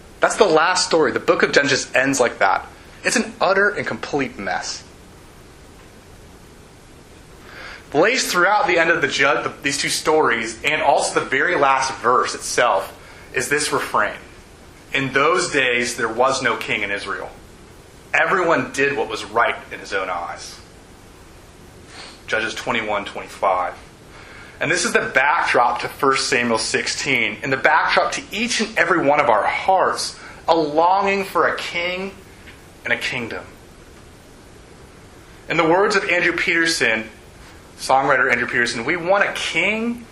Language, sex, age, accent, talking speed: English, male, 30-49, American, 145 wpm